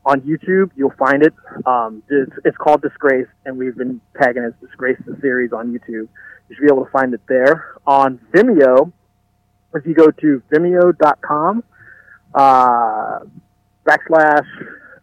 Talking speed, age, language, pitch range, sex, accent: 150 wpm, 30-49, English, 125-150 Hz, male, American